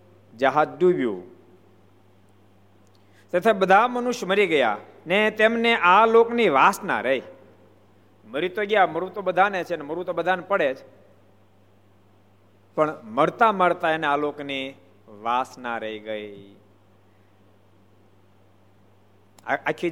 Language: Gujarati